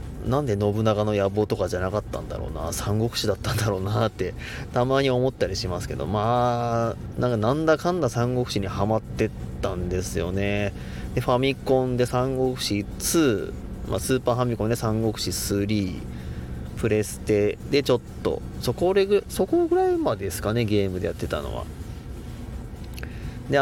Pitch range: 95-130 Hz